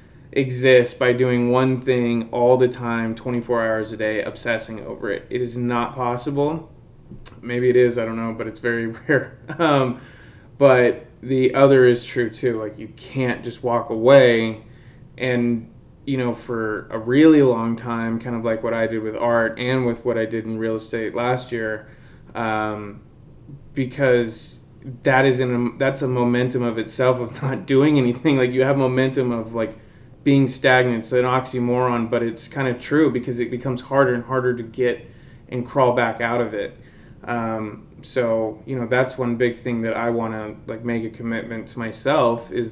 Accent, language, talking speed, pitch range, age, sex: American, English, 185 wpm, 115-135 Hz, 20-39, male